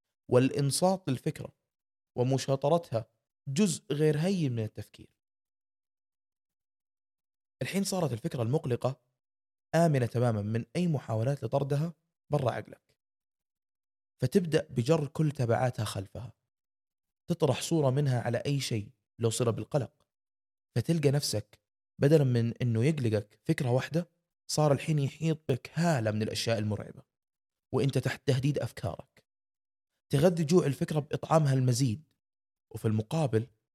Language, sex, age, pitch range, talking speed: Arabic, male, 20-39, 115-155 Hz, 105 wpm